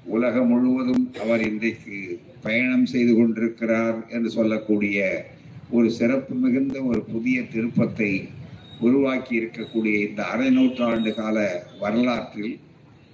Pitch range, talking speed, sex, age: 115-145 Hz, 100 wpm, male, 50-69